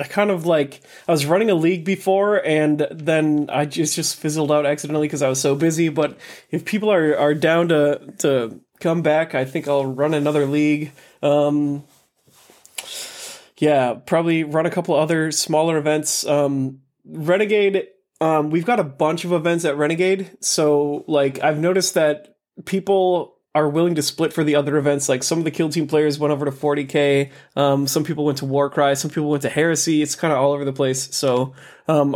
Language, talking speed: English, 200 wpm